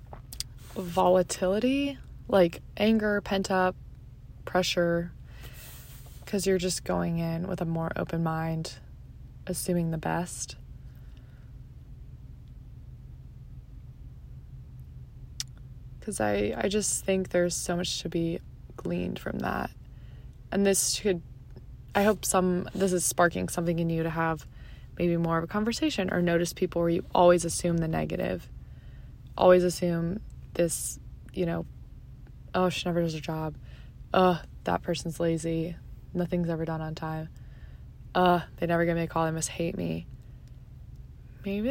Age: 20-39